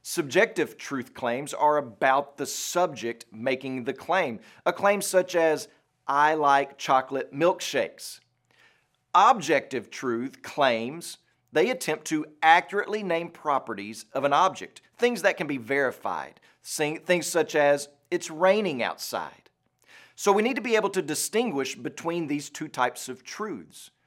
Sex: male